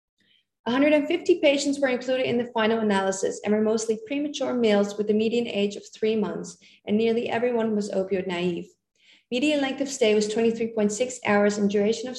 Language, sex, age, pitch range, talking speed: English, female, 30-49, 210-260 Hz, 170 wpm